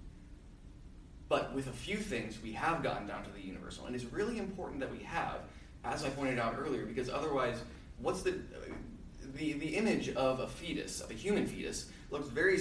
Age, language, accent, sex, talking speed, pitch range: 20-39, English, American, male, 190 wpm, 95-145 Hz